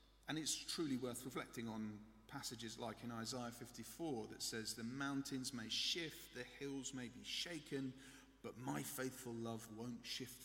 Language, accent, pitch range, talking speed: English, British, 120-155 Hz, 160 wpm